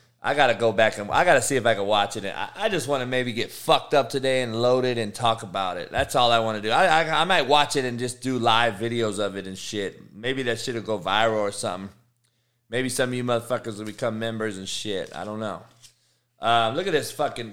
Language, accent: English, American